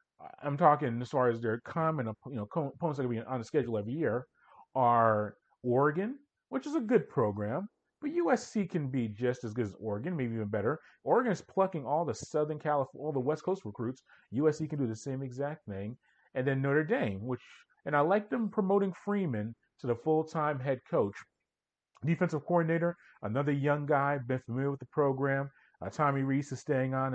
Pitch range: 115-155 Hz